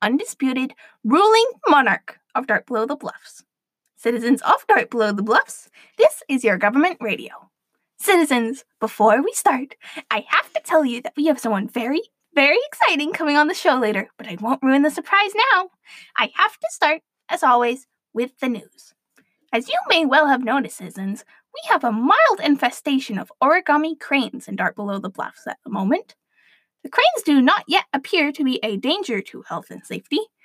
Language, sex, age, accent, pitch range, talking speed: English, female, 10-29, American, 230-330 Hz, 185 wpm